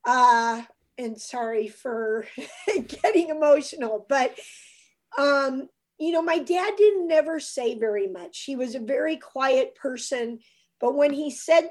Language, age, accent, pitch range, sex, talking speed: English, 50-69, American, 230-305 Hz, female, 140 wpm